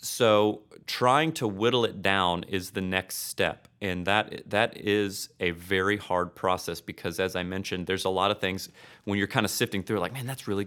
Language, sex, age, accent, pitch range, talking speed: English, male, 30-49, American, 90-105 Hz, 210 wpm